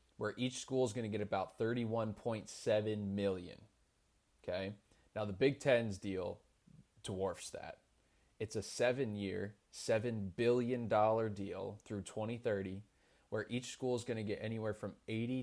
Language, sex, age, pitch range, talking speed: English, male, 20-39, 100-125 Hz, 140 wpm